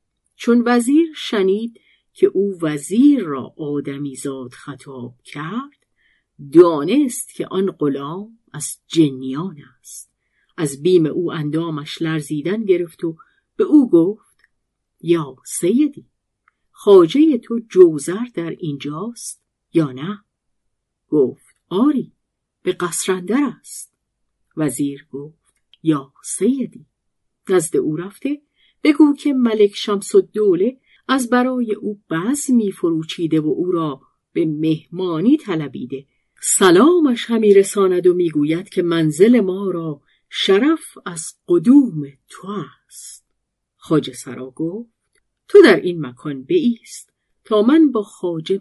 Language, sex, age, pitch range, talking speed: Persian, female, 50-69, 150-240 Hz, 115 wpm